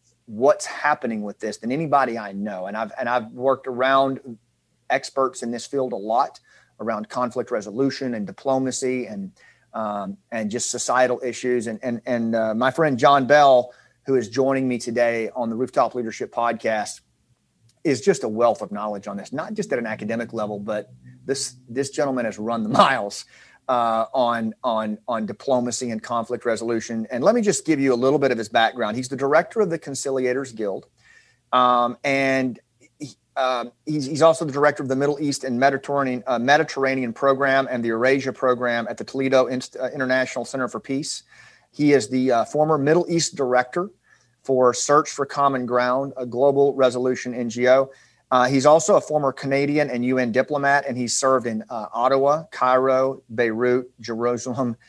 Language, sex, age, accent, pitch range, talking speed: English, male, 30-49, American, 120-135 Hz, 175 wpm